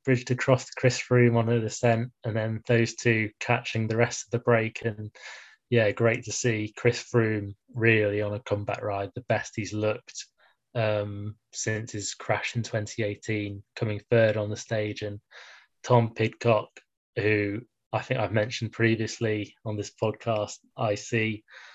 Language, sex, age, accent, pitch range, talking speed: English, male, 20-39, British, 105-120 Hz, 155 wpm